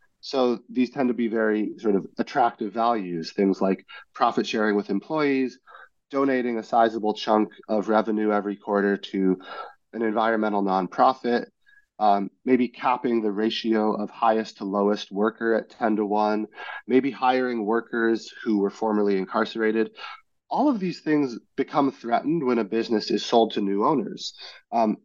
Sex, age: male, 30-49